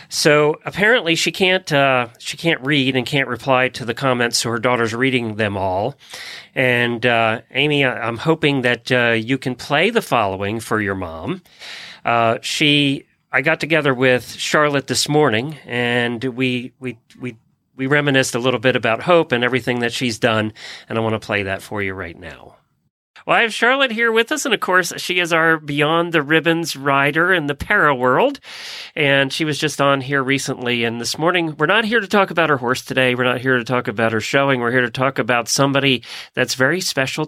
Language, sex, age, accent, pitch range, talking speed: English, male, 40-59, American, 120-155 Hz, 205 wpm